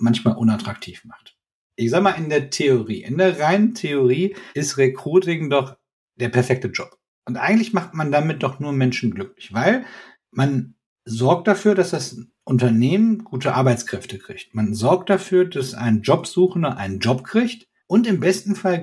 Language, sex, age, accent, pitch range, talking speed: German, male, 50-69, German, 130-185 Hz, 165 wpm